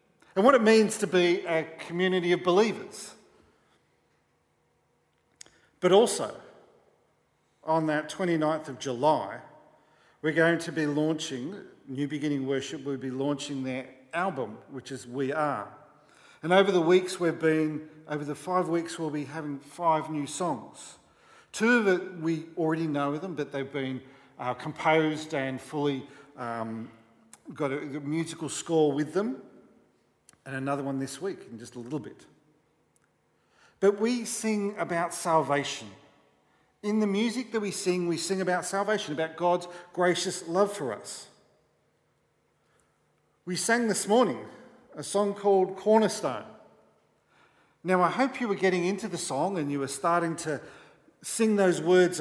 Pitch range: 145-185 Hz